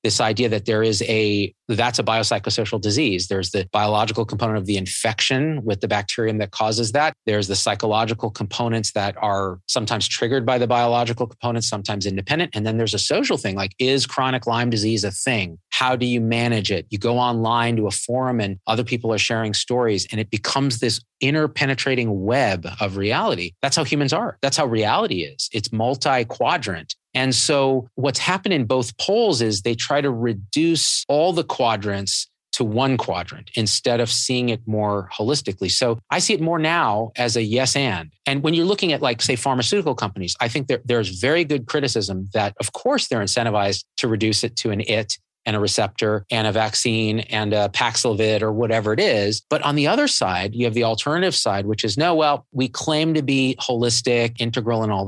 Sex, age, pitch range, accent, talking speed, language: male, 30-49, 105-130 Hz, American, 200 wpm, English